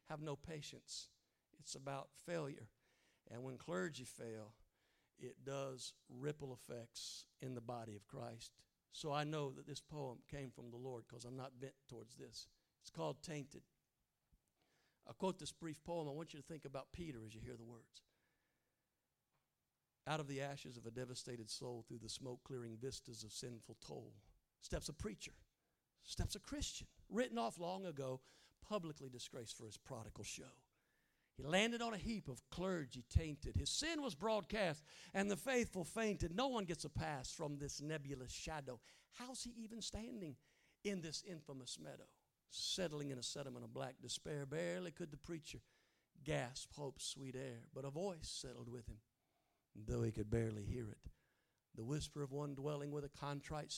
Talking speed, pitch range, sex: 170 wpm, 120-160 Hz, male